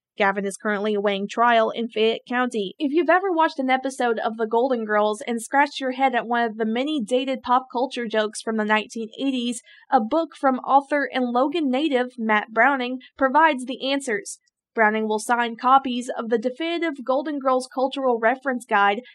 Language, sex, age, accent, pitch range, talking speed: English, female, 20-39, American, 225-265 Hz, 180 wpm